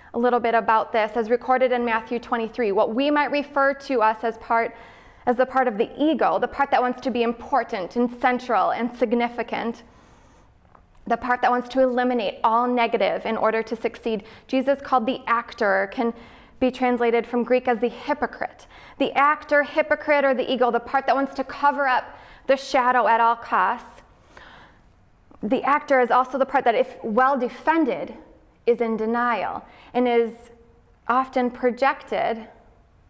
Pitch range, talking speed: 230-260 Hz, 170 wpm